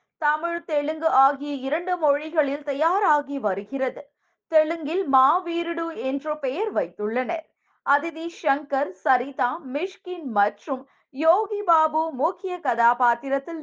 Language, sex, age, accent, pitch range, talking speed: Tamil, female, 20-39, native, 260-330 Hz, 95 wpm